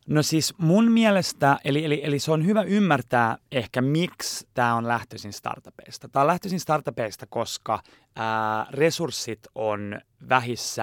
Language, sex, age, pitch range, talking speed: Finnish, male, 30-49, 115-140 Hz, 145 wpm